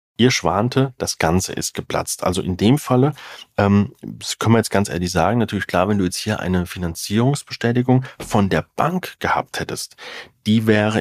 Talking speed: 175 wpm